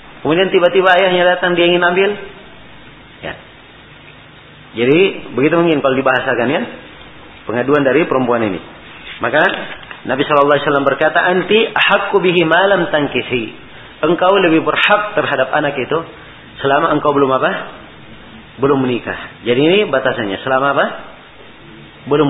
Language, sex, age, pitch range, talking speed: Malay, male, 40-59, 130-175 Hz, 130 wpm